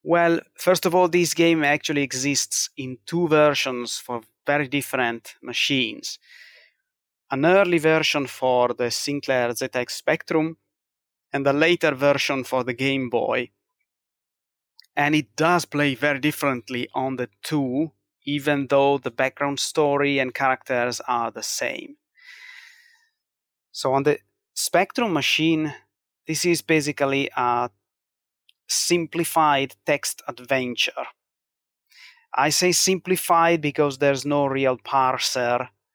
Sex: male